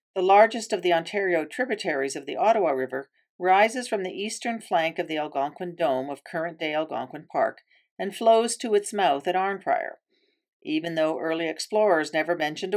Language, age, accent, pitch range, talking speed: English, 50-69, American, 160-225 Hz, 170 wpm